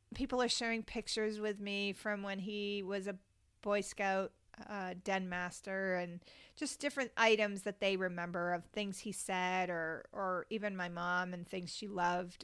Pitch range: 185-215 Hz